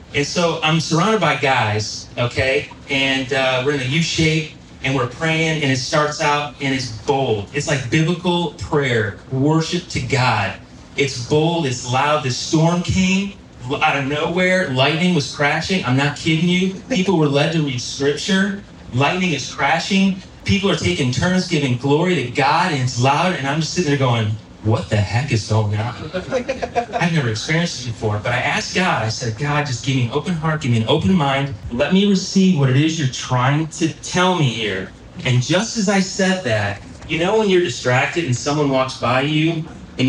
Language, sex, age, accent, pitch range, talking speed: English, male, 30-49, American, 125-170 Hz, 195 wpm